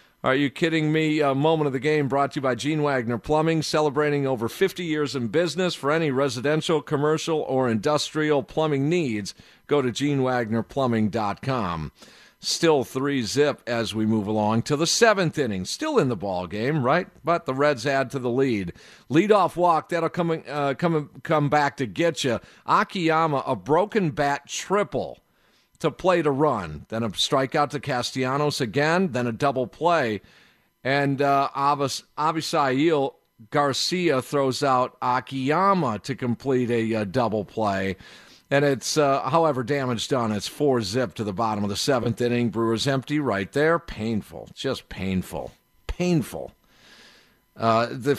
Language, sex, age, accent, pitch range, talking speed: English, male, 50-69, American, 120-155 Hz, 155 wpm